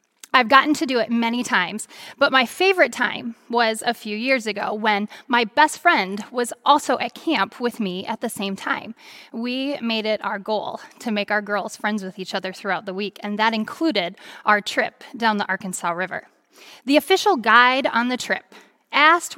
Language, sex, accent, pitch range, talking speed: English, female, American, 210-270 Hz, 190 wpm